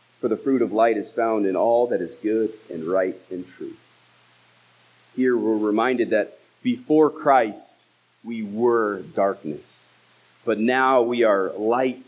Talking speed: 145 wpm